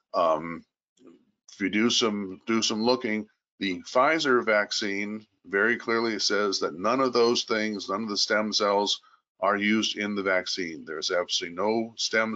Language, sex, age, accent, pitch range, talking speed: English, male, 50-69, American, 95-120 Hz, 160 wpm